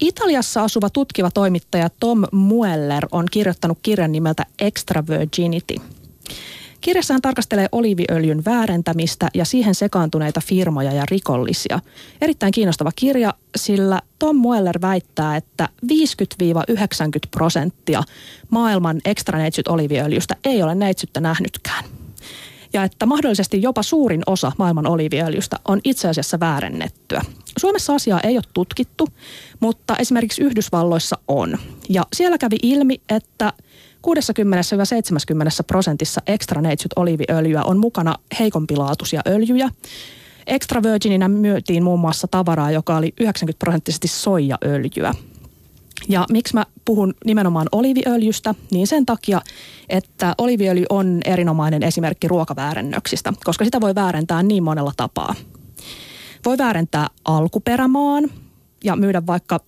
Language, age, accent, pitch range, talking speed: Finnish, 30-49, native, 160-220 Hz, 115 wpm